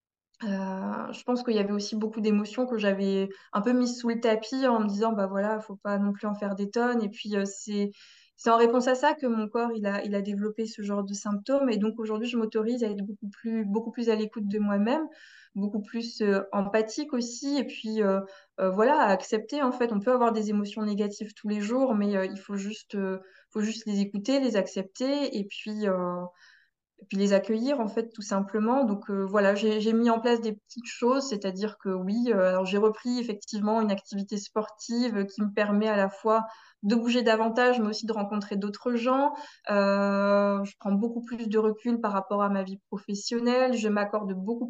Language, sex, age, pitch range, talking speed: French, female, 20-39, 200-235 Hz, 225 wpm